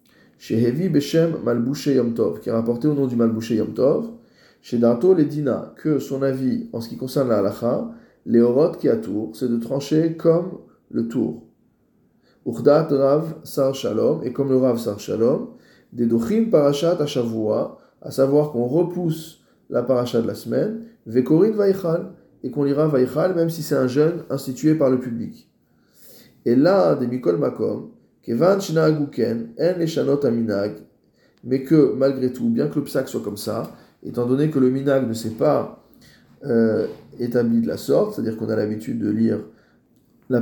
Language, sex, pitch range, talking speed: French, male, 115-150 Hz, 165 wpm